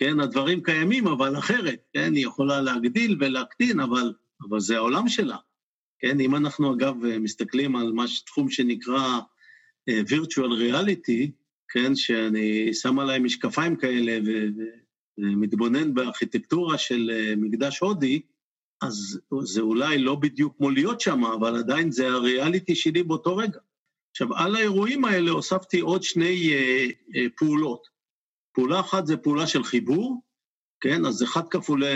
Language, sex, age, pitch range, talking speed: Hebrew, male, 50-69, 125-185 Hz, 145 wpm